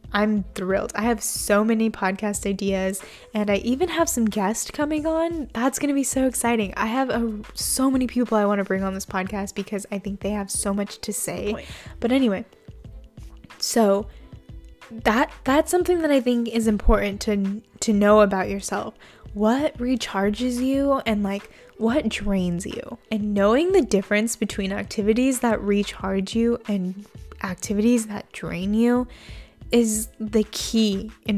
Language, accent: English, American